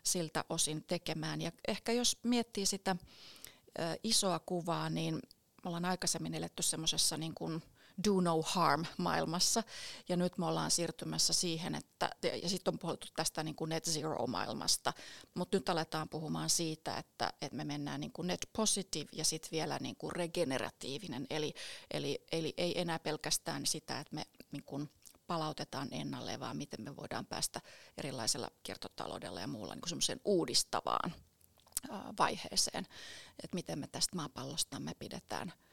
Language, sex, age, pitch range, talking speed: Finnish, female, 30-49, 155-185 Hz, 130 wpm